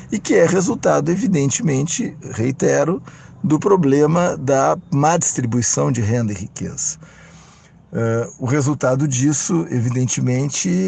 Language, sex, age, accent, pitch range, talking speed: Portuguese, male, 50-69, Brazilian, 120-155 Hz, 105 wpm